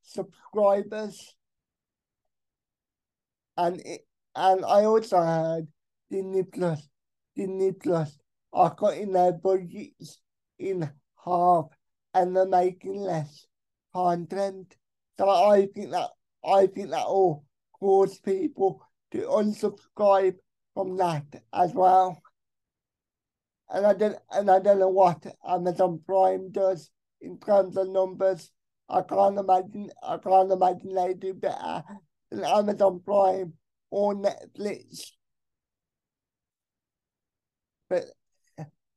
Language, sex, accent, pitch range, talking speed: English, male, British, 180-200 Hz, 105 wpm